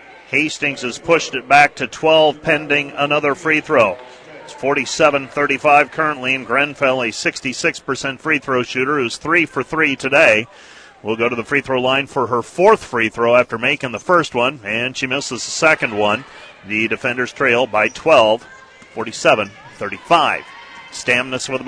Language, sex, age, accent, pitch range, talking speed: English, male, 40-59, American, 130-150 Hz, 160 wpm